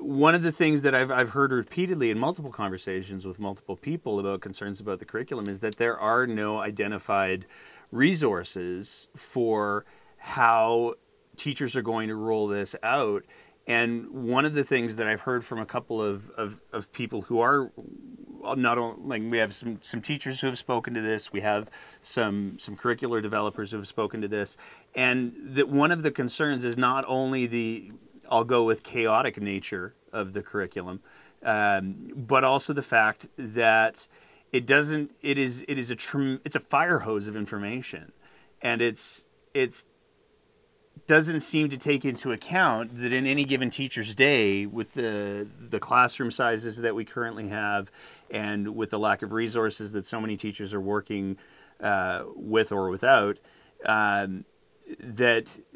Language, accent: English, American